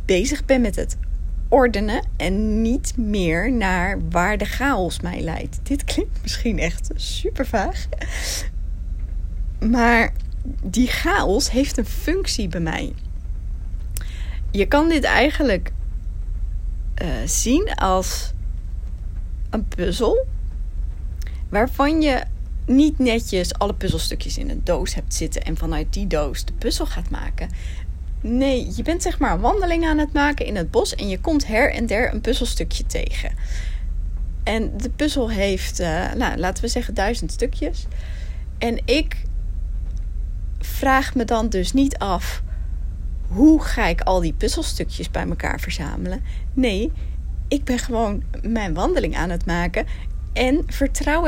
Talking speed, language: 135 wpm, Dutch